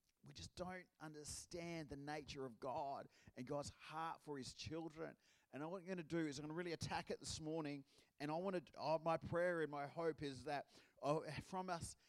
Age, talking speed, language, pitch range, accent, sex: 30-49, 220 wpm, English, 155-190 Hz, Australian, male